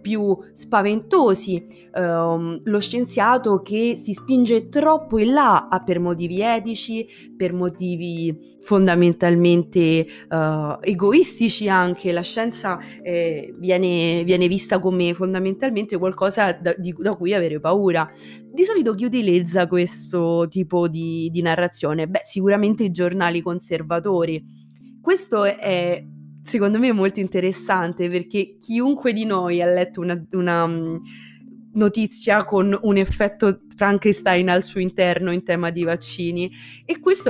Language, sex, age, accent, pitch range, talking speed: Italian, female, 20-39, native, 170-210 Hz, 125 wpm